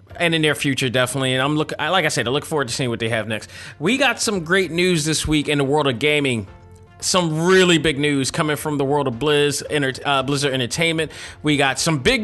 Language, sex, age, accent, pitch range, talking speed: English, male, 30-49, American, 130-165 Hz, 230 wpm